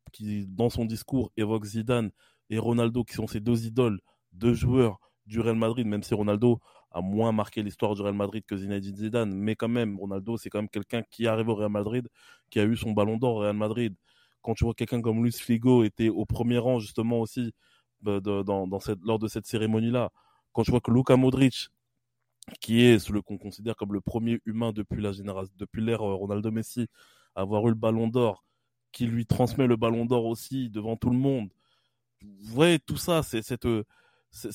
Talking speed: 210 wpm